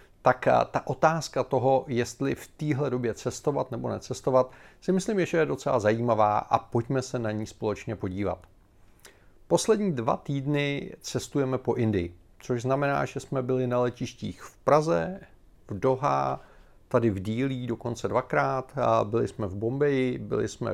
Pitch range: 110-135 Hz